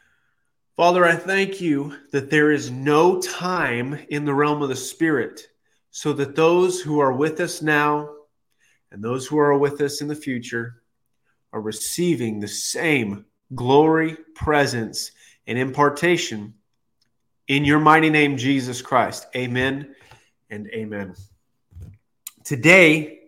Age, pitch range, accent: 30-49, 120-155 Hz, American